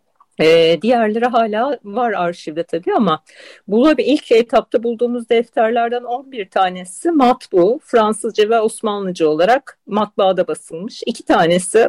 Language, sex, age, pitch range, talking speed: Turkish, female, 50-69, 185-285 Hz, 110 wpm